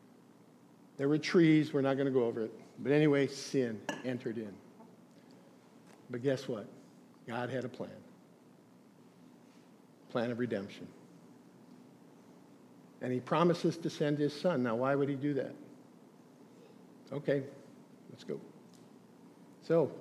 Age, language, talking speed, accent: 50-69, English, 125 wpm, American